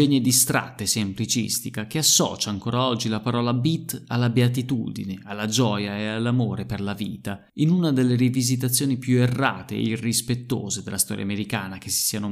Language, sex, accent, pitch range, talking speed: Italian, male, native, 105-125 Hz, 165 wpm